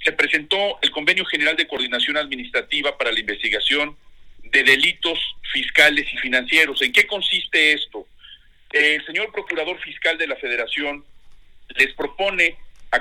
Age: 50-69